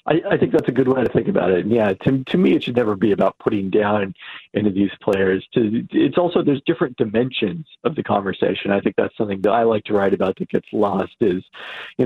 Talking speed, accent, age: 255 wpm, American, 40-59